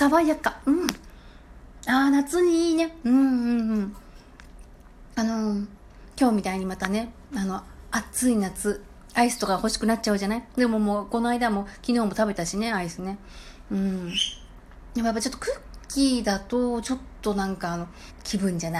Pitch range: 180-270 Hz